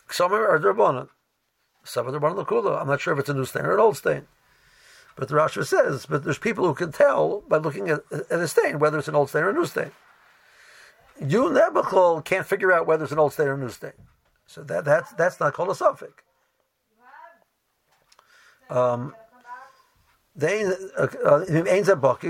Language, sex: English, male